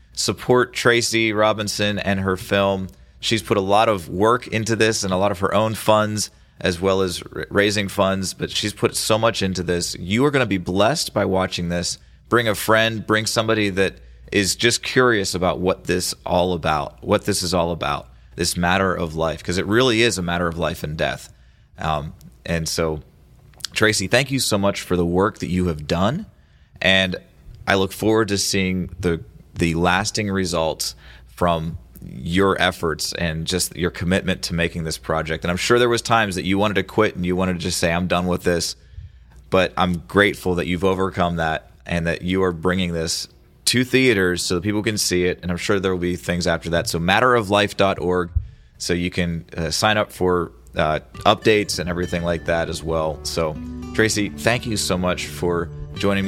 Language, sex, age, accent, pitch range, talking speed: English, male, 30-49, American, 85-105 Hz, 200 wpm